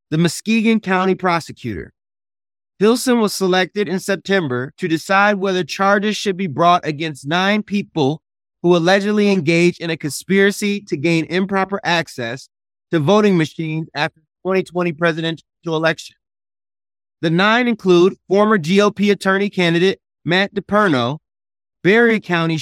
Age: 30-49